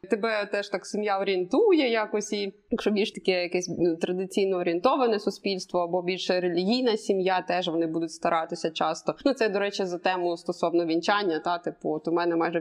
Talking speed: 175 wpm